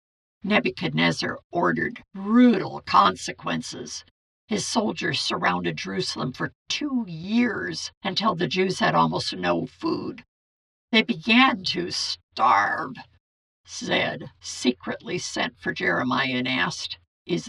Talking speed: 105 wpm